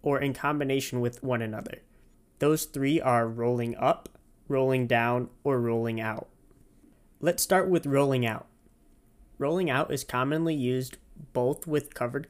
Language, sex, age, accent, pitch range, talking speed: English, male, 20-39, American, 120-145 Hz, 140 wpm